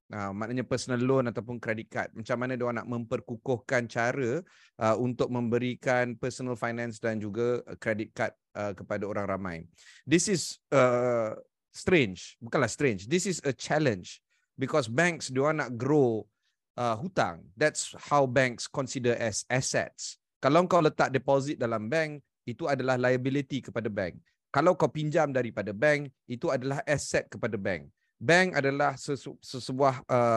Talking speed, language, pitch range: 145 wpm, Malay, 120-150 Hz